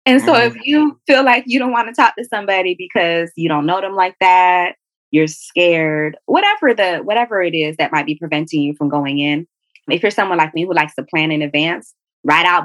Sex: female